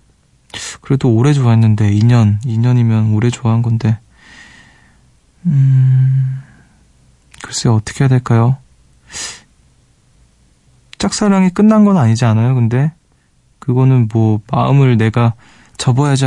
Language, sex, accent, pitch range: Korean, male, native, 115-145 Hz